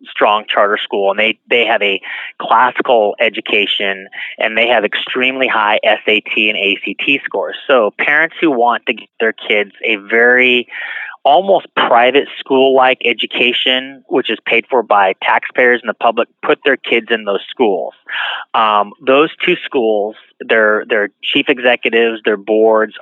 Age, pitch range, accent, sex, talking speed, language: 30-49, 105-130 Hz, American, male, 150 wpm, English